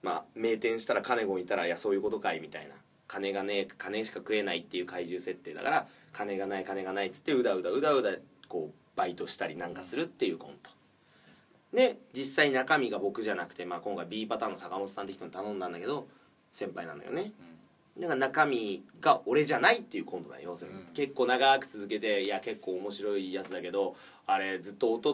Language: Japanese